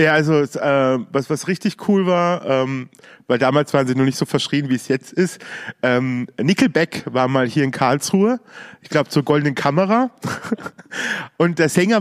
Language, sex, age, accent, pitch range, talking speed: German, male, 40-59, German, 140-180 Hz, 180 wpm